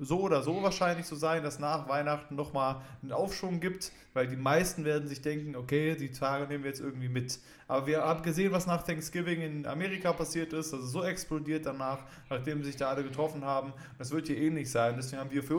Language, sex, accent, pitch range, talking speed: German, male, German, 135-160 Hz, 225 wpm